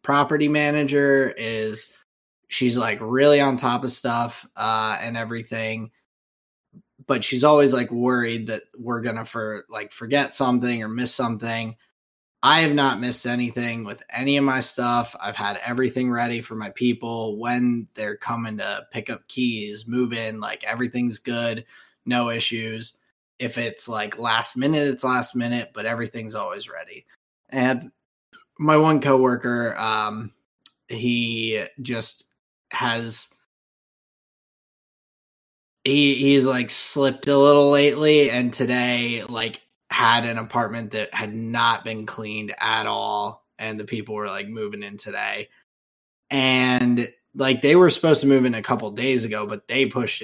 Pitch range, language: 110-130 Hz, English